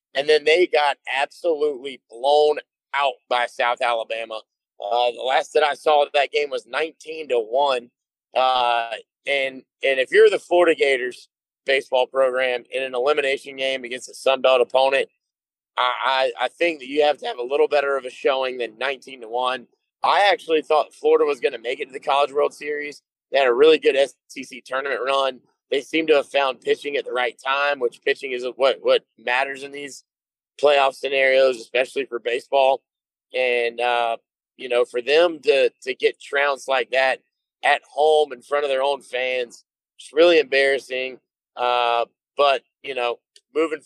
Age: 30-49